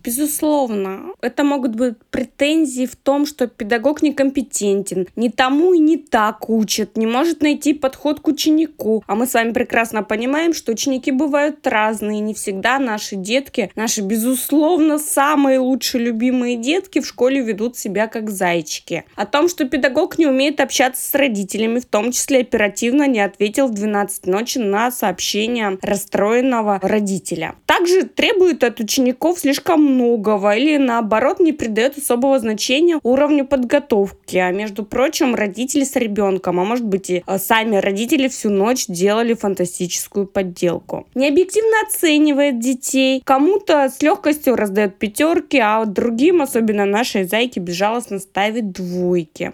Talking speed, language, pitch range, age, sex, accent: 145 wpm, Russian, 210-290 Hz, 20-39, female, native